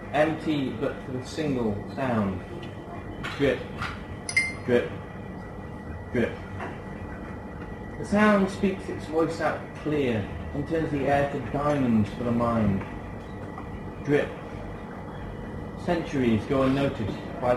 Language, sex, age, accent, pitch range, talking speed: English, male, 30-49, British, 100-150 Hz, 100 wpm